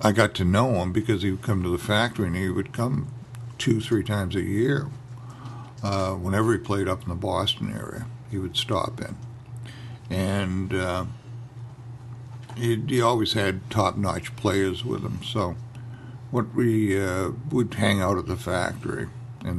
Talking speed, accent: 170 wpm, American